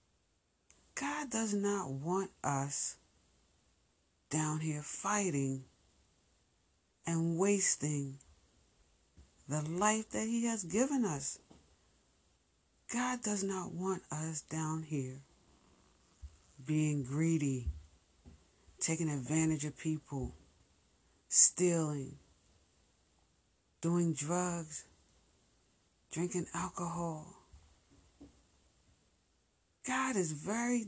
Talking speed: 75 wpm